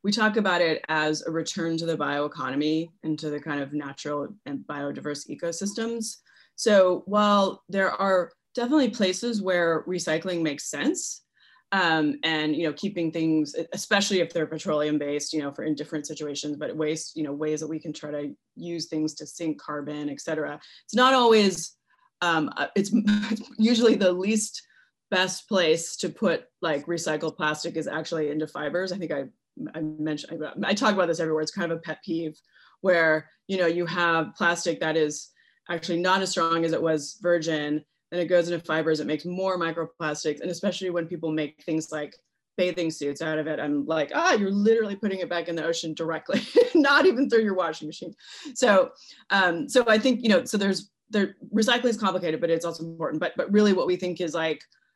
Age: 20-39